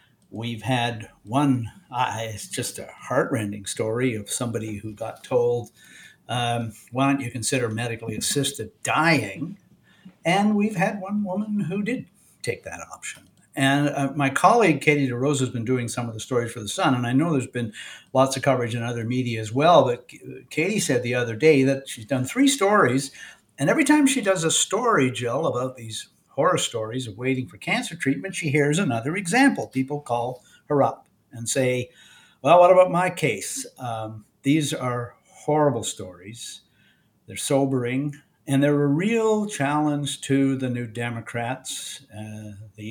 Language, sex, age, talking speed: English, male, 60-79, 170 wpm